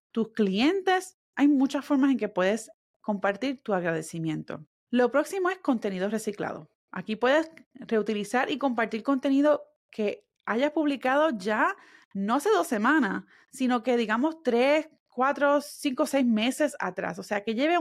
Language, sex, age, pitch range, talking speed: Spanish, female, 30-49, 210-290 Hz, 145 wpm